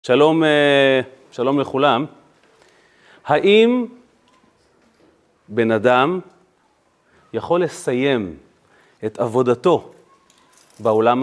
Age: 30-49